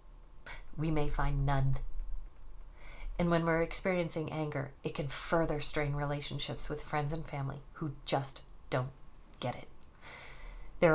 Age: 40-59